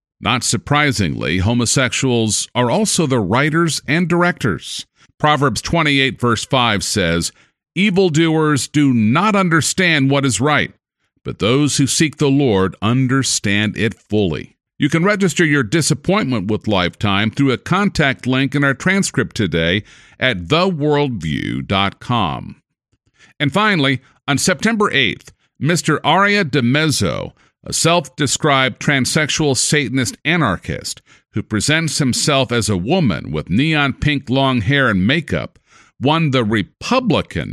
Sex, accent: male, American